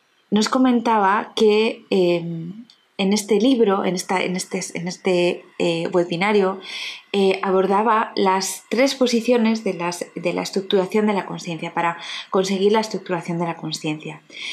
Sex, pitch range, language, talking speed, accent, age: female, 185-220 Hz, Spanish, 145 wpm, Spanish, 20-39